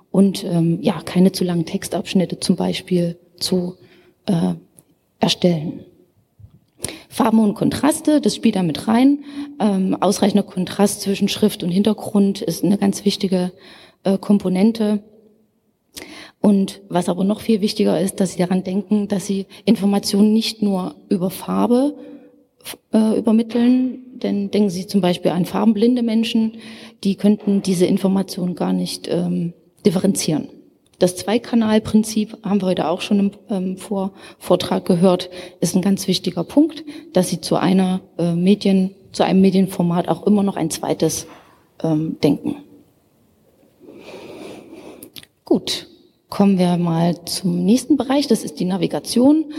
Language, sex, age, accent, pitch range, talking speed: German, female, 30-49, German, 180-215 Hz, 135 wpm